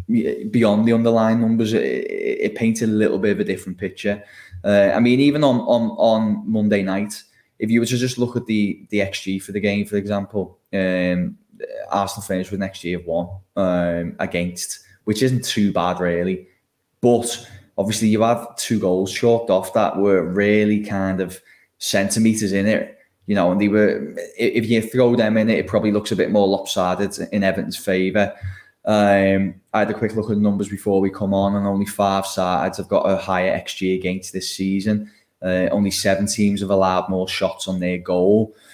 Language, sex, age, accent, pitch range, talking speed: English, male, 10-29, British, 95-115 Hz, 200 wpm